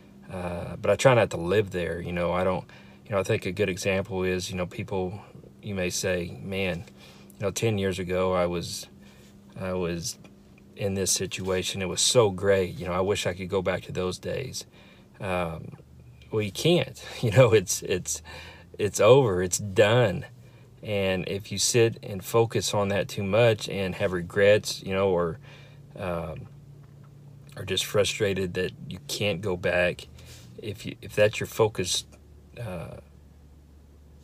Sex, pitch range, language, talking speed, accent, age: male, 85-100 Hz, English, 170 wpm, American, 40-59